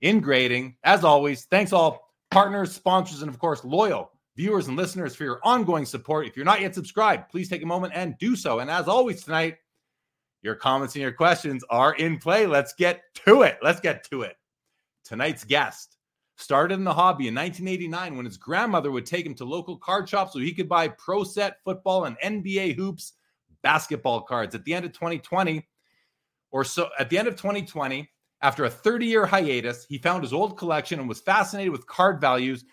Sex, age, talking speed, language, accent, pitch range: male, 30-49, 200 wpm, English, American, 140-195 Hz